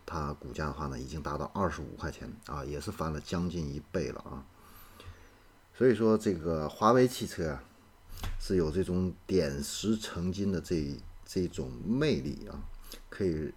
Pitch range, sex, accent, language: 75-95 Hz, male, native, Chinese